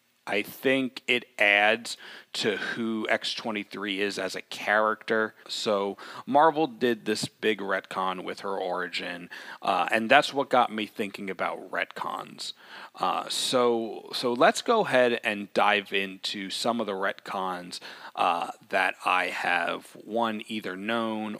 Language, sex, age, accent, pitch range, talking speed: English, male, 30-49, American, 95-120 Hz, 135 wpm